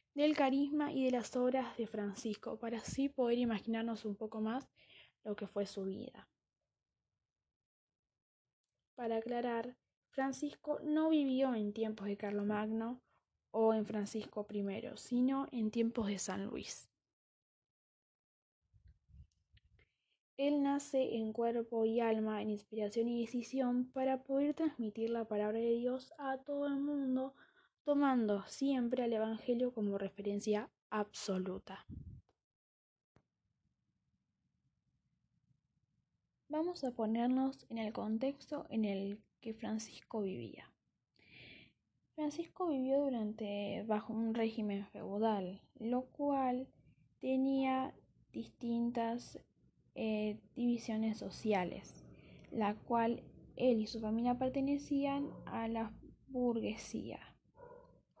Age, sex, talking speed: 10-29, female, 105 wpm